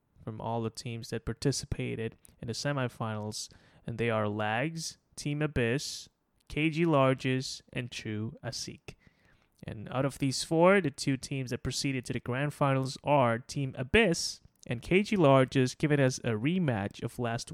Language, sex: English, male